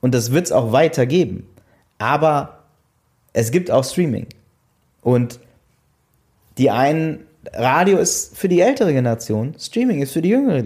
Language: German